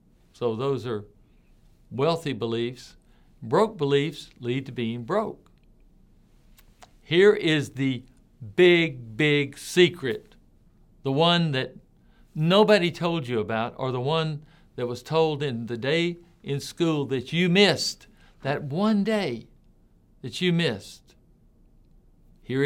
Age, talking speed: 60-79, 120 wpm